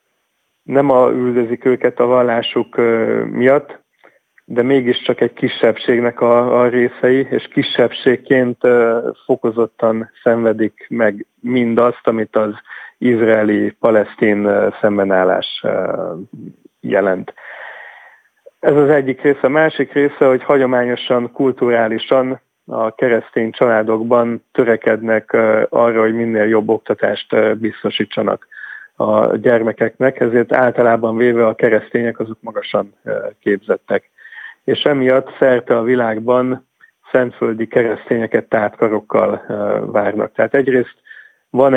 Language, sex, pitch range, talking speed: Hungarian, male, 115-125 Hz, 105 wpm